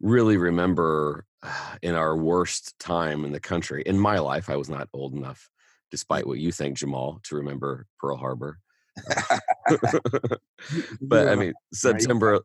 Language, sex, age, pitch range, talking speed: English, male, 40-59, 75-90 Hz, 145 wpm